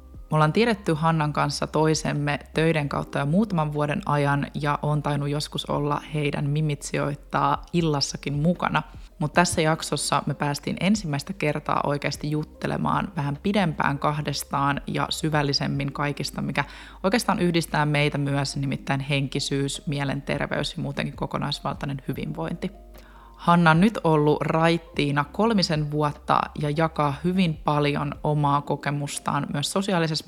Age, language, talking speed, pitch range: 20-39, Finnish, 125 wpm, 145-160 Hz